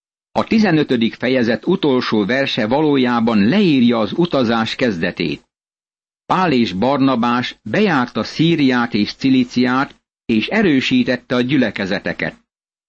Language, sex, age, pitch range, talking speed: Hungarian, male, 60-79, 120-155 Hz, 100 wpm